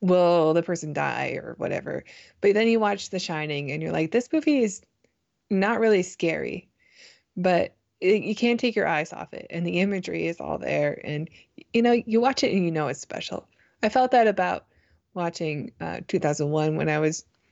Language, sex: English, female